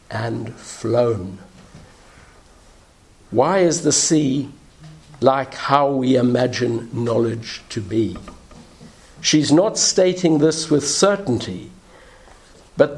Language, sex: English, male